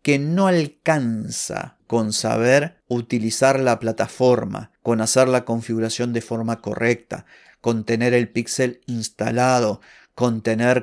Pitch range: 115-140 Hz